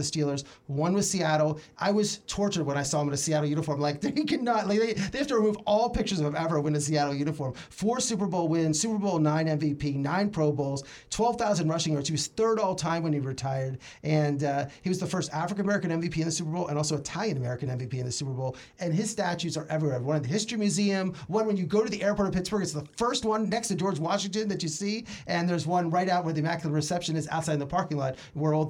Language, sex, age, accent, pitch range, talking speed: English, male, 30-49, American, 150-200 Hz, 260 wpm